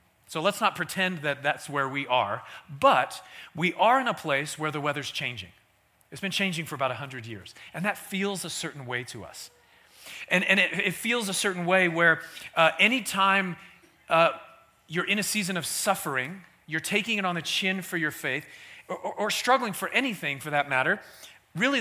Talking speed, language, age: 195 wpm, English, 40-59